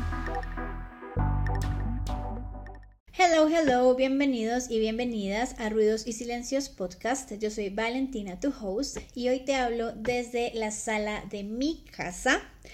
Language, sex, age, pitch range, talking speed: Spanish, female, 20-39, 205-245 Hz, 120 wpm